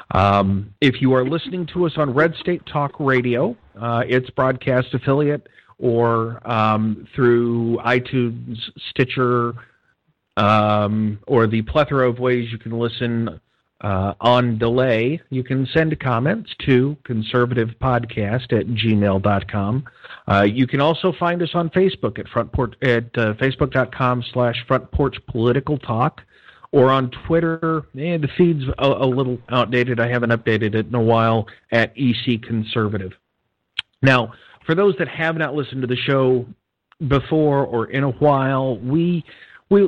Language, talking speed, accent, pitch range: English, 145 wpm, American, 115-145 Hz